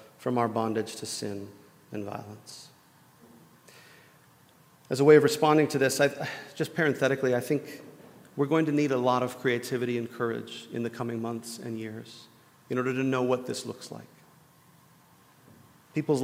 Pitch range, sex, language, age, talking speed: 115-145 Hz, male, English, 40-59, 160 wpm